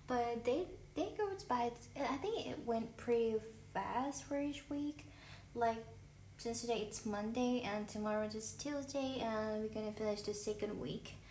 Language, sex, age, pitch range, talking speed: English, female, 20-39, 205-245 Hz, 165 wpm